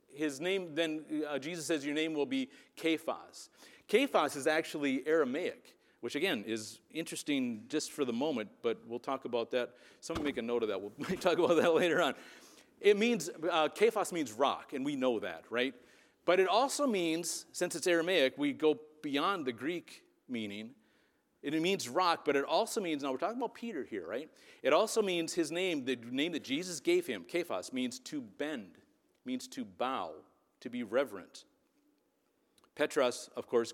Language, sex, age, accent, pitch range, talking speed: English, male, 40-59, American, 135-230 Hz, 180 wpm